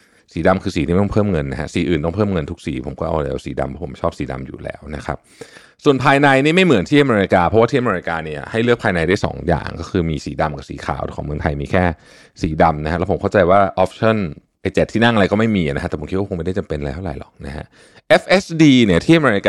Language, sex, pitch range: Thai, male, 80-110 Hz